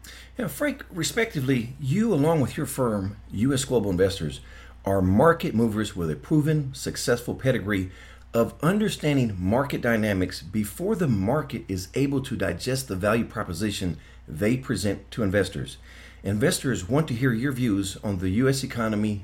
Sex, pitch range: male, 95-135 Hz